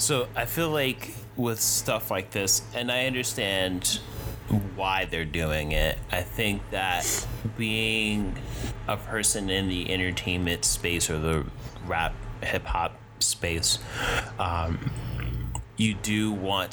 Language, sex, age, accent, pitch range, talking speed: English, male, 30-49, American, 90-110 Hz, 120 wpm